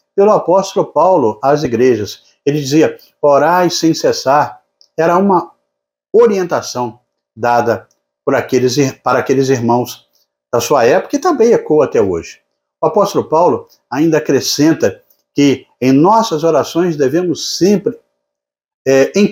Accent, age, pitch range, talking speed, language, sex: Brazilian, 50-69, 115-180 Hz, 115 wpm, Portuguese, male